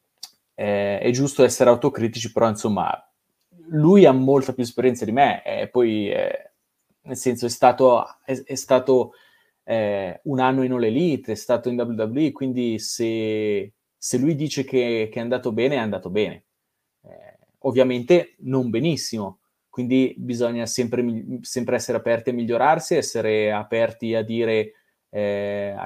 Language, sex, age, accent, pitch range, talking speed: Italian, male, 20-39, native, 110-130 Hz, 145 wpm